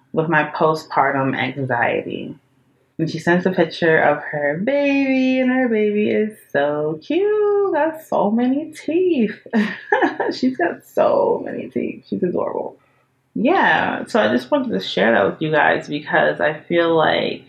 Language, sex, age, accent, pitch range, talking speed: English, female, 30-49, American, 135-205 Hz, 150 wpm